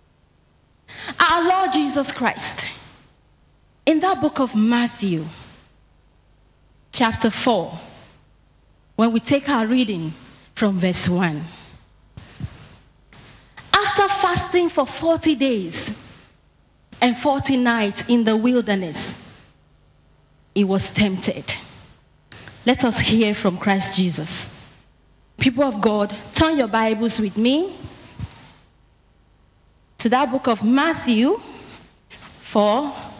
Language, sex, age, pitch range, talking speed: English, female, 30-49, 185-255 Hz, 95 wpm